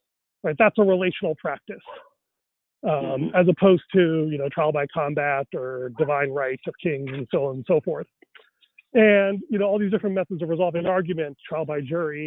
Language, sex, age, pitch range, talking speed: English, male, 40-59, 175-240 Hz, 185 wpm